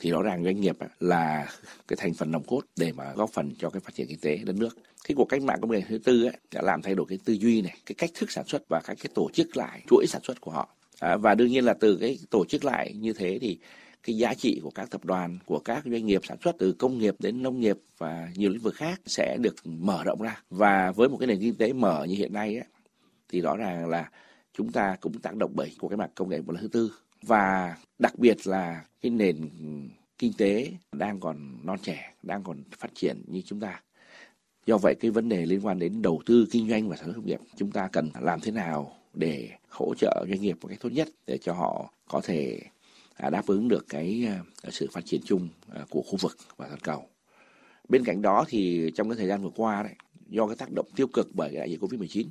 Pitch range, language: 85-115 Hz, Vietnamese